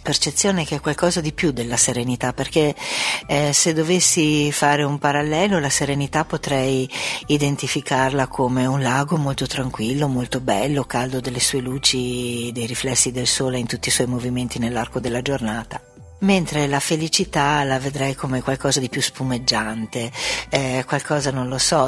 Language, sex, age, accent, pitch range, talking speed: Italian, female, 50-69, native, 130-155 Hz, 155 wpm